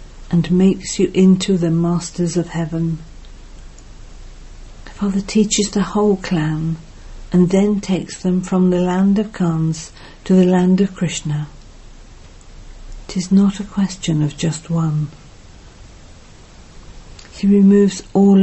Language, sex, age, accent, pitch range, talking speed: English, female, 50-69, British, 150-185 Hz, 125 wpm